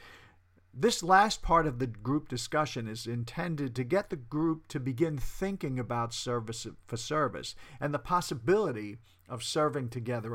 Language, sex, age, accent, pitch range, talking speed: English, male, 50-69, American, 115-150 Hz, 150 wpm